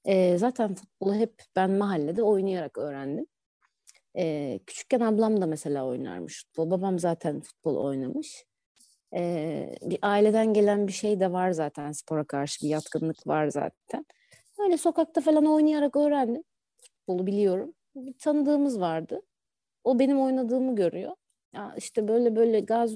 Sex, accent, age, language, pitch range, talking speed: female, native, 30-49, Turkish, 180-275 Hz, 140 wpm